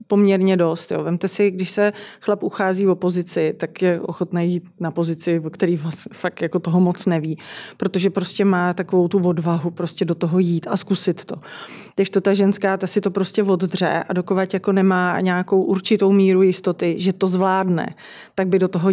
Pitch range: 180-195 Hz